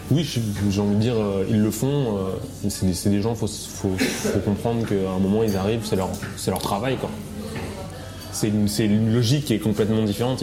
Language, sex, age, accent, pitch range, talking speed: French, male, 20-39, French, 95-110 Hz, 205 wpm